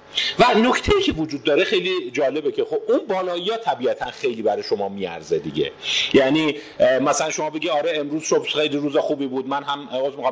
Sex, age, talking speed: male, 50-69, 175 wpm